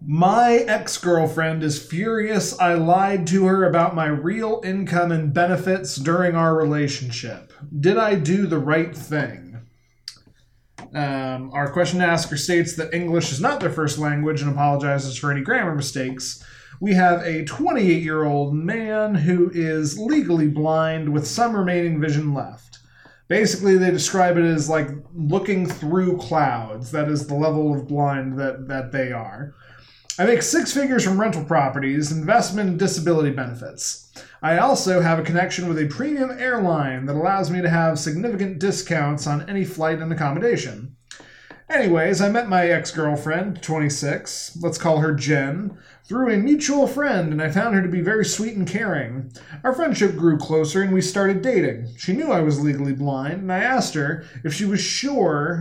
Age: 20-39